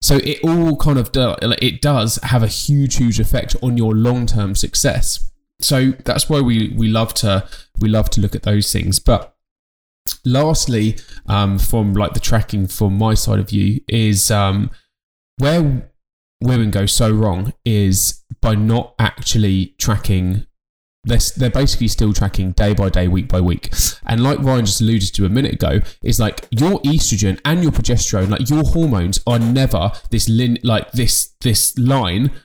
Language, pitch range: English, 105-135 Hz